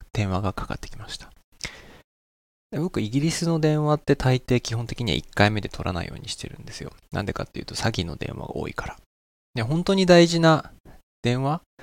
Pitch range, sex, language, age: 85-145 Hz, male, Japanese, 20-39